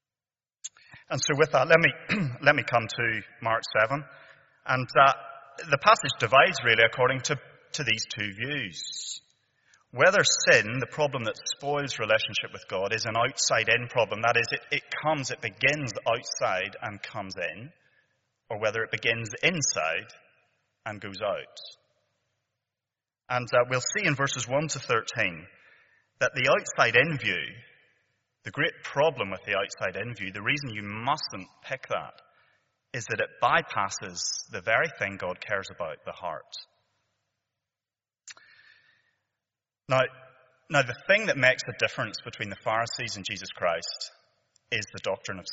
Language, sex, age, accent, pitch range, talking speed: English, male, 30-49, British, 110-140 Hz, 150 wpm